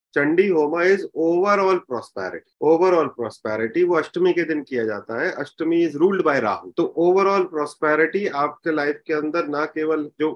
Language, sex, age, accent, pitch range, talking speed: Hindi, male, 30-49, native, 140-180 Hz, 170 wpm